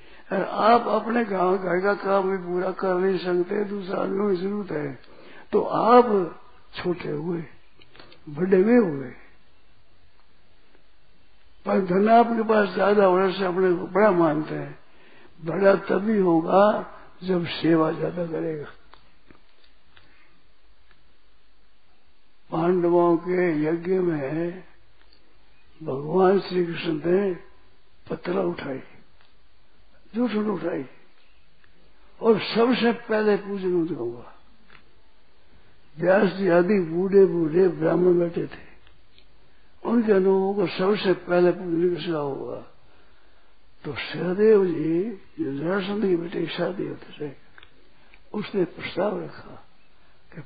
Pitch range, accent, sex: 165-200 Hz, native, male